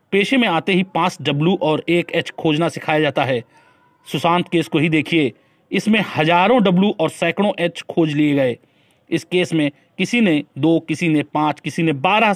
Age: 30-49